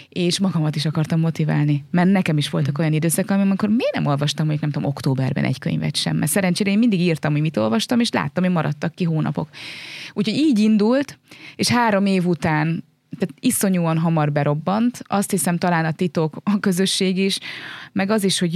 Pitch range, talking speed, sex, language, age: 150-185 Hz, 185 wpm, female, Hungarian, 20-39